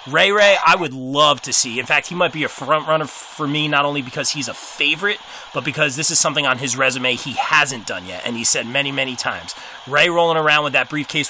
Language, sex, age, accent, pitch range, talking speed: English, male, 30-49, American, 130-160 Hz, 250 wpm